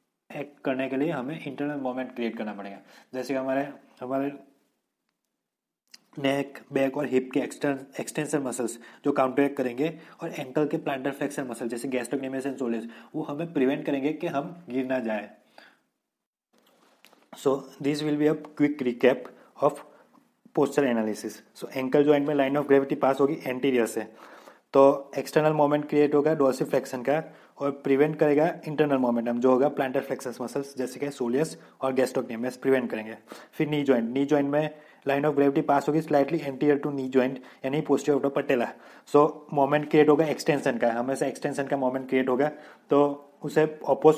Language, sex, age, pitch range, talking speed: Hindi, male, 20-39, 130-150 Hz, 165 wpm